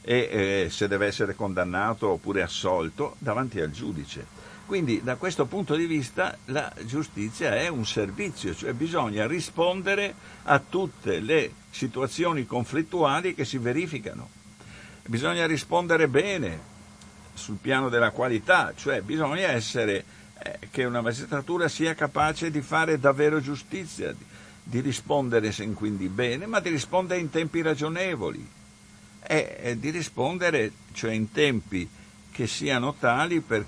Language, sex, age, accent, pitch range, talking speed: Italian, male, 60-79, native, 110-165 Hz, 130 wpm